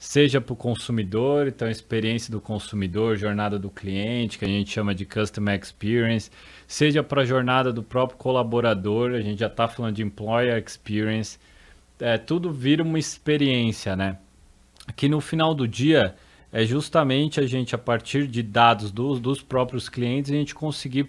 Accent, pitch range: Brazilian, 110-140 Hz